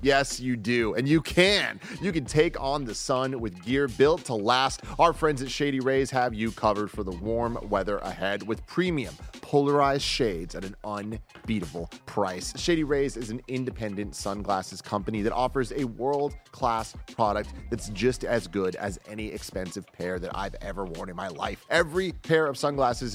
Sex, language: male, English